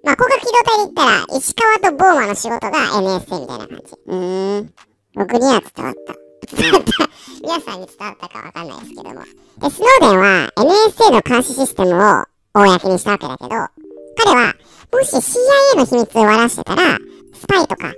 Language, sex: Japanese, male